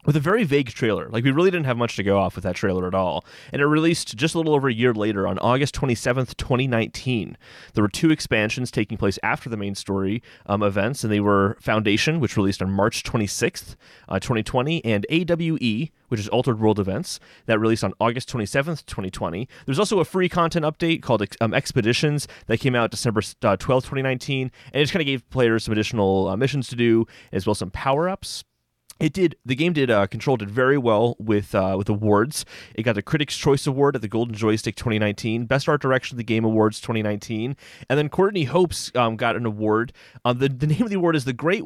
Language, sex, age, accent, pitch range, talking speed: English, male, 30-49, American, 105-140 Hz, 220 wpm